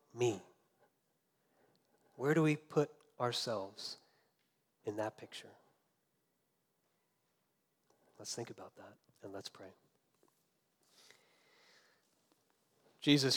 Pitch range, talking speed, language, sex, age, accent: 120-140 Hz, 75 wpm, English, male, 40-59, American